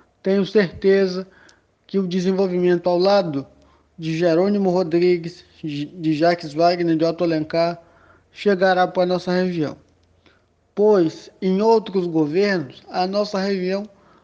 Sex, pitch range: male, 165-195 Hz